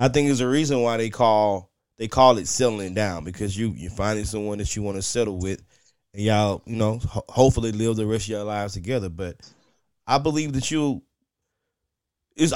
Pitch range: 115-160 Hz